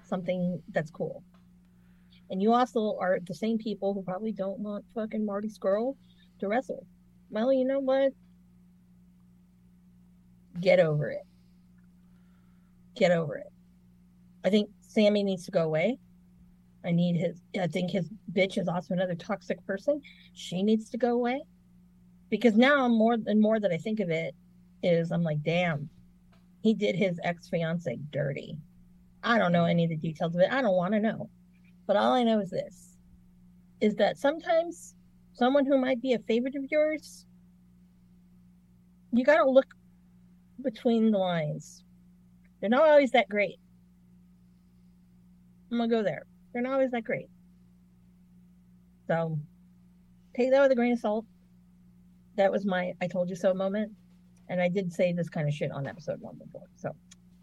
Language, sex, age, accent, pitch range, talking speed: English, female, 40-59, American, 145-210 Hz, 160 wpm